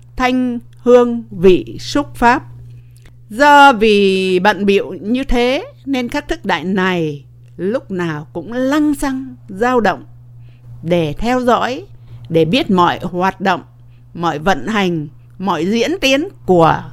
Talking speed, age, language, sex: 135 wpm, 50-69, English, female